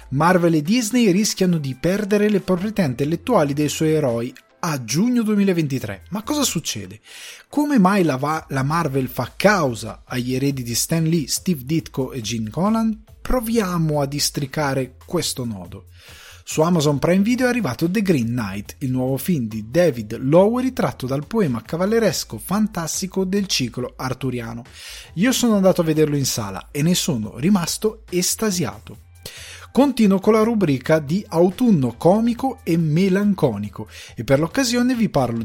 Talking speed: 150 wpm